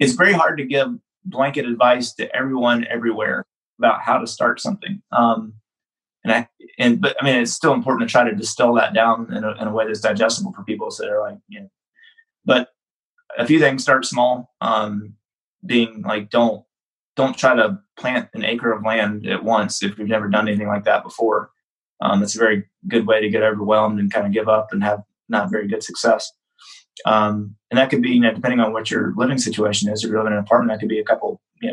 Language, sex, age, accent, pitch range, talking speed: English, male, 20-39, American, 110-130 Hz, 225 wpm